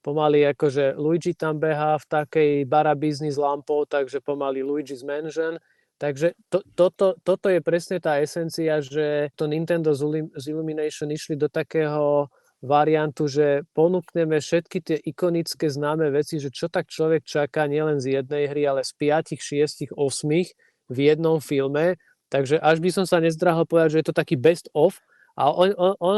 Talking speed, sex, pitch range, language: 170 wpm, male, 145-160 Hz, Slovak